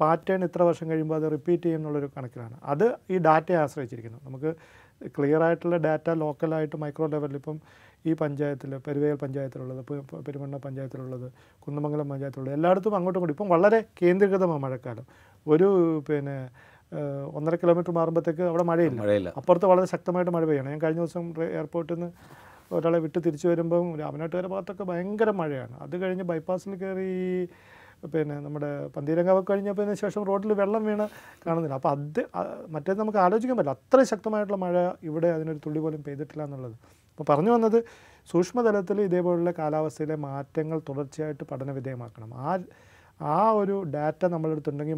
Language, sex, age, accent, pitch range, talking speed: Malayalam, male, 40-59, native, 145-180 Hz, 135 wpm